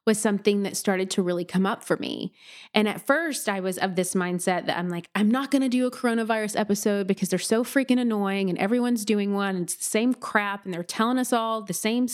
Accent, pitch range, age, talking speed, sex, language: American, 195-240 Hz, 30-49, 240 wpm, female, English